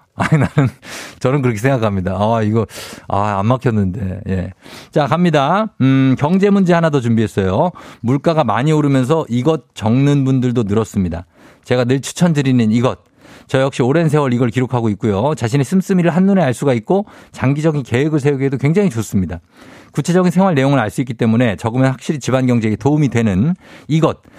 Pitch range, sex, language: 115-155 Hz, male, Korean